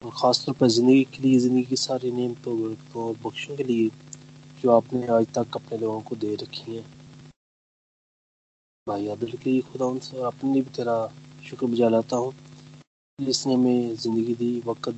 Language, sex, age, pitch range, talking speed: Hindi, male, 20-39, 115-140 Hz, 170 wpm